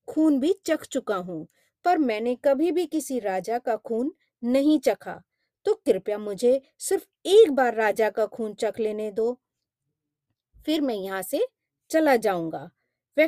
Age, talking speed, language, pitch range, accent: 30-49, 140 wpm, Hindi, 200-305 Hz, native